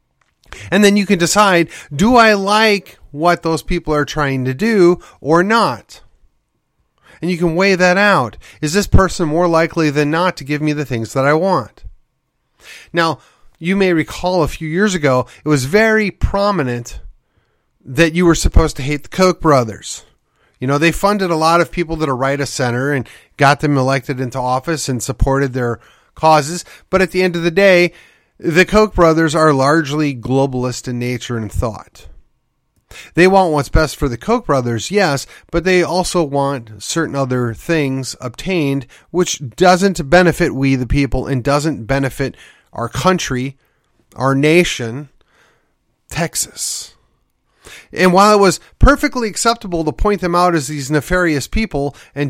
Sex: male